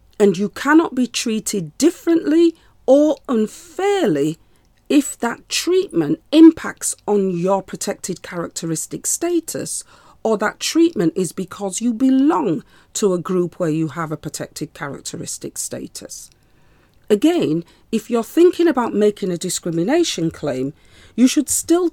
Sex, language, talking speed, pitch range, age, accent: female, English, 125 wpm, 175-285 Hz, 40-59, British